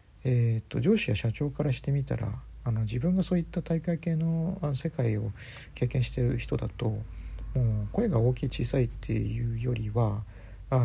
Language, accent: Japanese, native